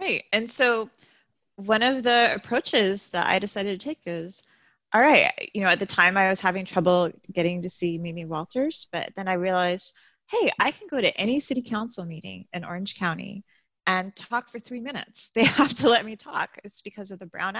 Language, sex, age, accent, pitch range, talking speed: English, female, 30-49, American, 185-235 Hz, 210 wpm